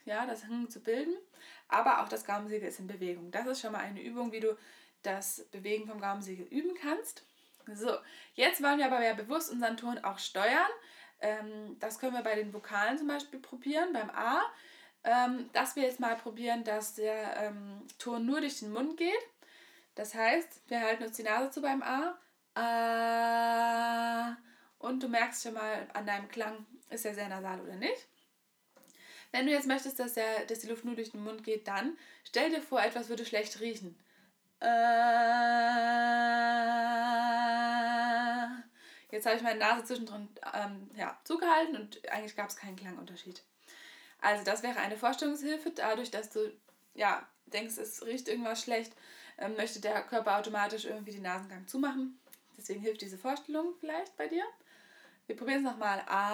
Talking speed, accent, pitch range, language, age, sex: 165 wpm, German, 215-260 Hz, German, 20-39, female